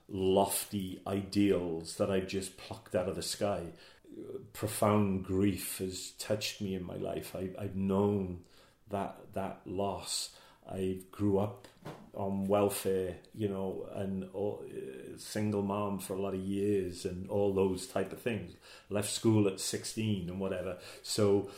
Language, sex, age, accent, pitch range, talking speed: English, male, 40-59, British, 95-110 Hz, 145 wpm